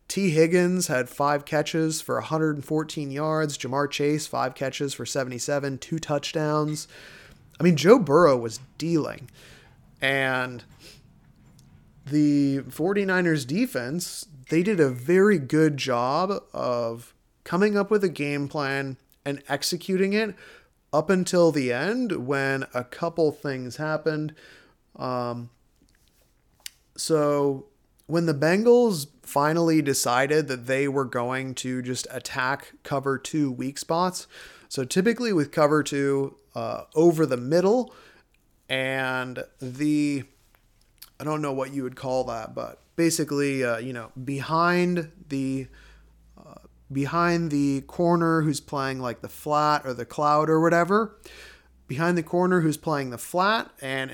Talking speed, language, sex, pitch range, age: 130 wpm, English, male, 130-165 Hz, 30-49